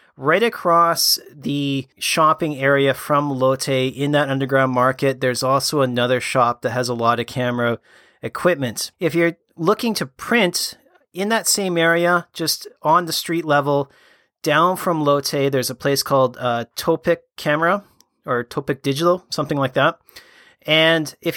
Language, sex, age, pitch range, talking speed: English, male, 30-49, 130-160 Hz, 150 wpm